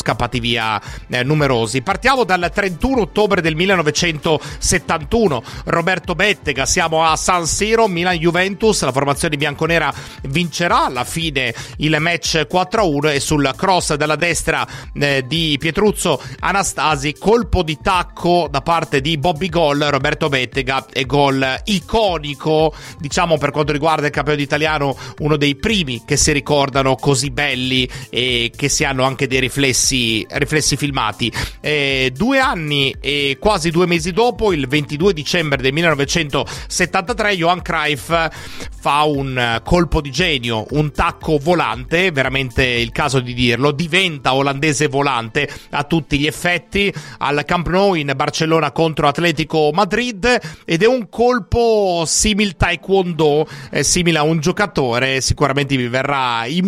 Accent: native